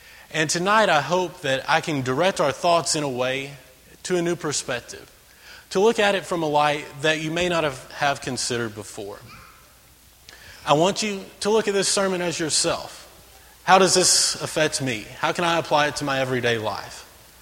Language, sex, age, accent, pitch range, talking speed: English, male, 30-49, American, 135-180 Hz, 190 wpm